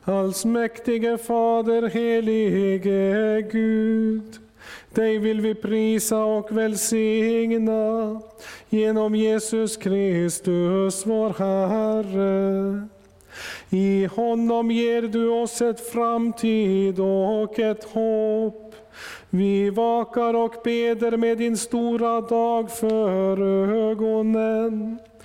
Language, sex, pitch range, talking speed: Swedish, male, 205-230 Hz, 85 wpm